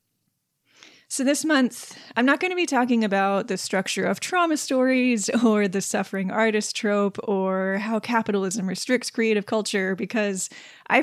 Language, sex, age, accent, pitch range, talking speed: English, female, 10-29, American, 190-230 Hz, 150 wpm